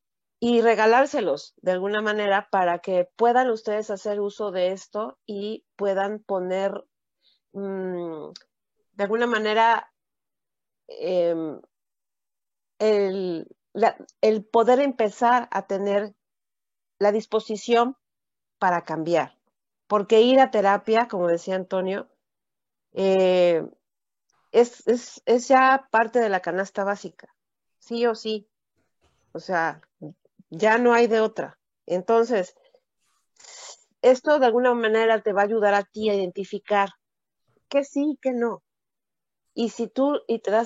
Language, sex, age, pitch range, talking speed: Spanish, female, 40-59, 195-235 Hz, 120 wpm